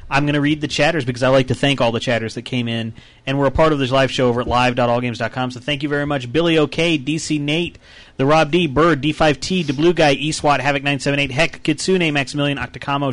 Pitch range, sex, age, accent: 130-155 Hz, male, 30-49, American